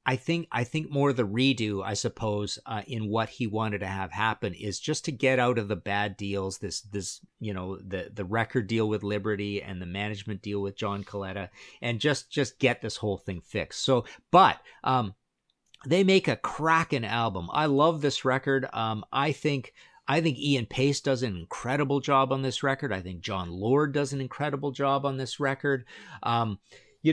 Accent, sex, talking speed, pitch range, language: American, male, 200 wpm, 105-135 Hz, English